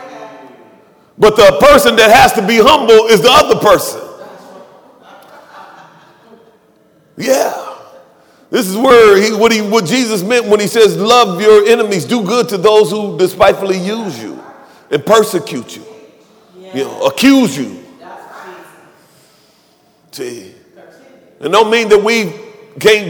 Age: 40-59